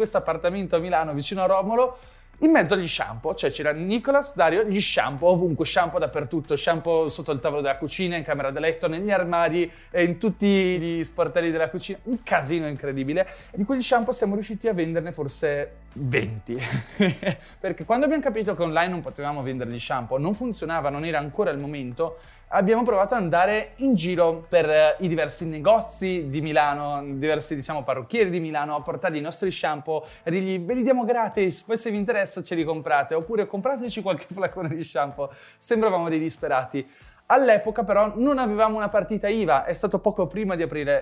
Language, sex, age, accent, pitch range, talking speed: Italian, male, 20-39, native, 150-210 Hz, 180 wpm